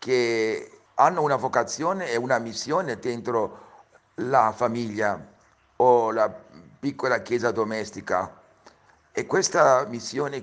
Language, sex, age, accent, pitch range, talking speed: Italian, male, 50-69, native, 105-140 Hz, 105 wpm